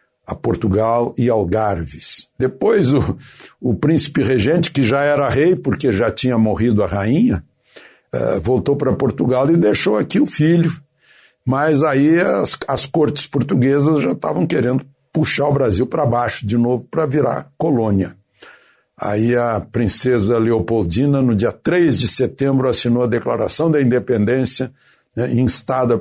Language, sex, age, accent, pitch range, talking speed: Portuguese, male, 60-79, Brazilian, 110-140 Hz, 145 wpm